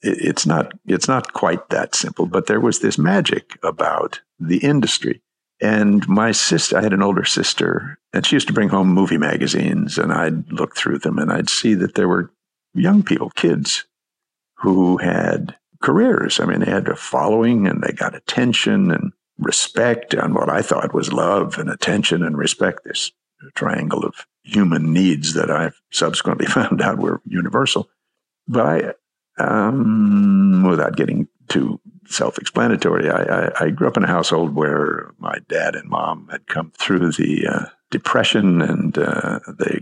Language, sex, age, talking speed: English, male, 60-79, 165 wpm